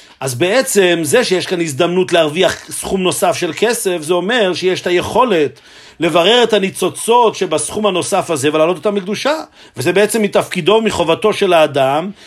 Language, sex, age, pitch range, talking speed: Hebrew, male, 50-69, 170-220 Hz, 150 wpm